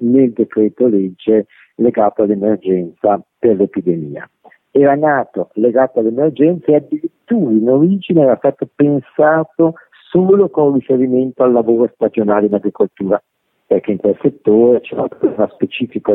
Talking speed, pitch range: 125 wpm, 105-140 Hz